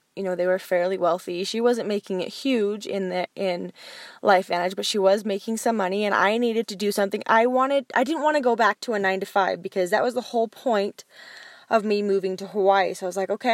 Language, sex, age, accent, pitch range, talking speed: English, female, 10-29, American, 185-230 Hz, 255 wpm